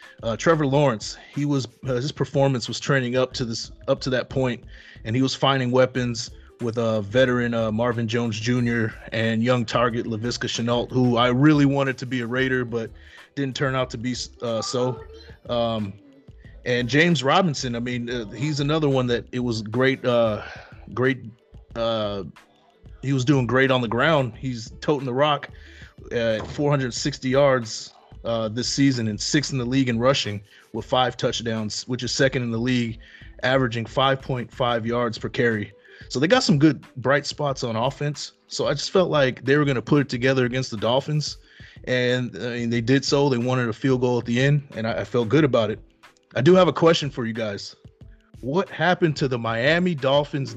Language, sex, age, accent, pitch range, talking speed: English, male, 30-49, American, 115-140 Hz, 195 wpm